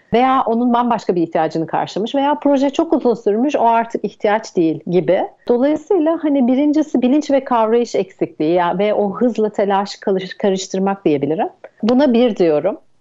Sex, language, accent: female, Turkish, native